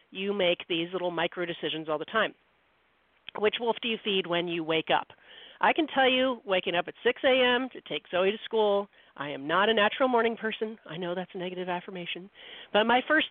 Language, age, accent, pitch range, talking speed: English, 40-59, American, 175-230 Hz, 215 wpm